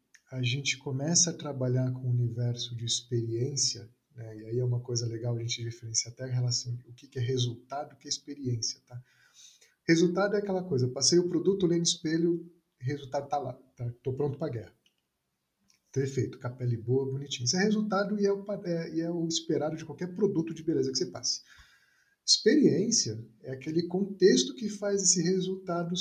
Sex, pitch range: male, 125-165 Hz